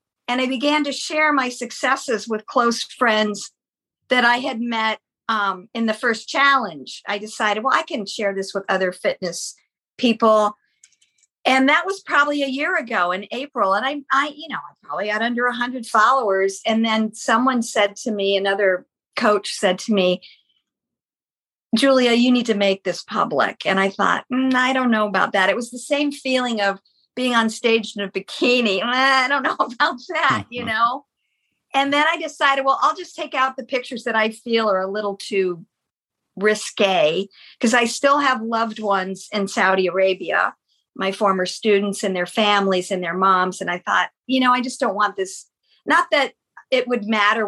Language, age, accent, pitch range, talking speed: English, 50-69, American, 200-265 Hz, 185 wpm